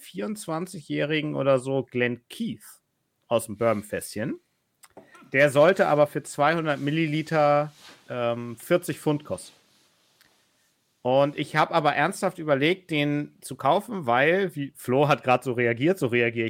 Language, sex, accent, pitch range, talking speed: German, male, German, 125-155 Hz, 130 wpm